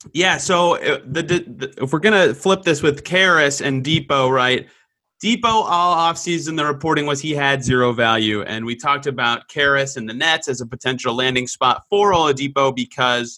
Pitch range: 125-160 Hz